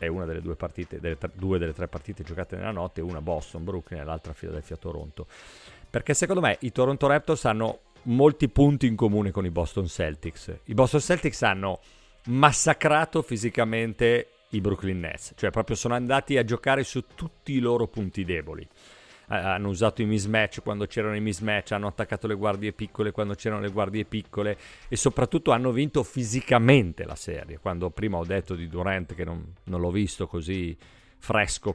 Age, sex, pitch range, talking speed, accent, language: 40-59, male, 90-120 Hz, 170 wpm, native, Italian